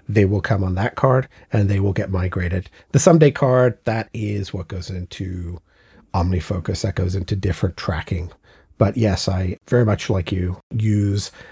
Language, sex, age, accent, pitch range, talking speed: English, male, 40-59, American, 95-120 Hz, 170 wpm